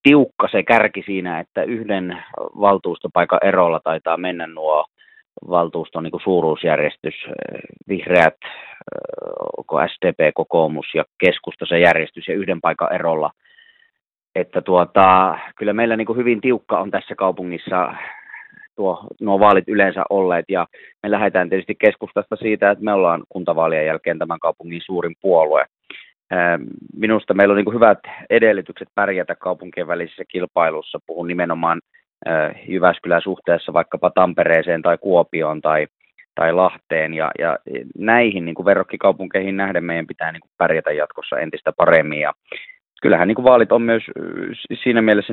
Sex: male